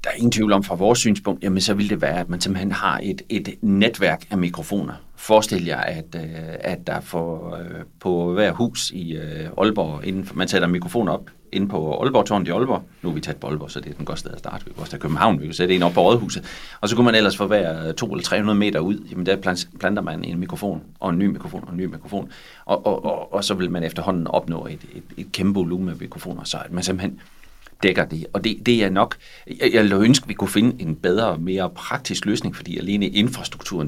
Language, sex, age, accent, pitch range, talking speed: Danish, male, 40-59, native, 85-105 Hz, 240 wpm